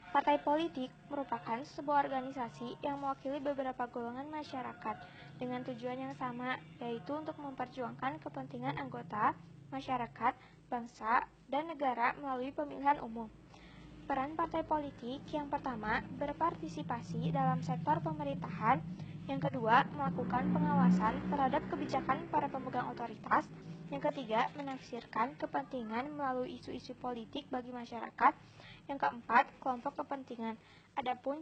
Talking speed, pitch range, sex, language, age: 110 wpm, 230-285 Hz, female, Indonesian, 20-39